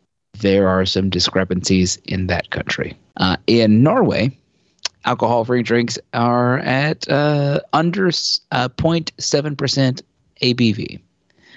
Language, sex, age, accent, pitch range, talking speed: English, male, 30-49, American, 100-130 Hz, 100 wpm